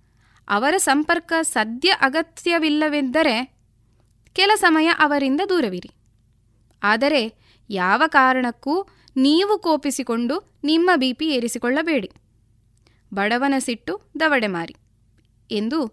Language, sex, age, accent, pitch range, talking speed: Kannada, female, 20-39, native, 195-290 Hz, 75 wpm